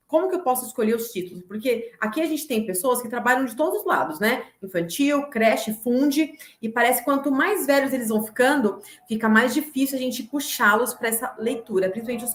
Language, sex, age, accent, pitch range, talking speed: Portuguese, female, 30-49, Brazilian, 210-285 Hz, 210 wpm